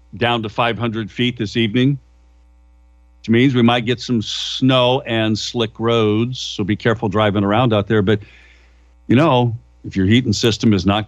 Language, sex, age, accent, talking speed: English, male, 50-69, American, 175 wpm